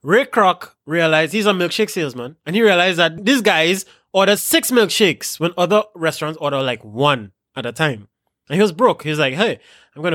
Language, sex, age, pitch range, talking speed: English, male, 20-39, 145-200 Hz, 205 wpm